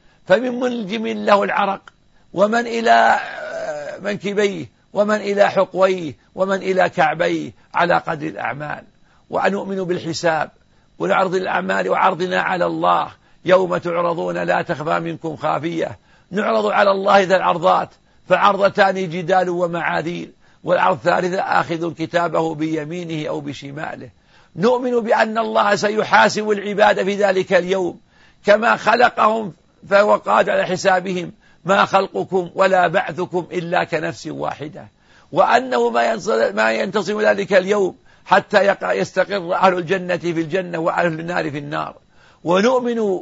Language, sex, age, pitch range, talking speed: Arabic, male, 50-69, 170-200 Hz, 115 wpm